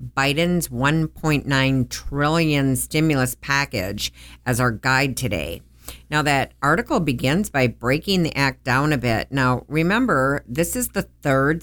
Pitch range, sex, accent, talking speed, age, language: 125-165 Hz, female, American, 135 wpm, 50-69, English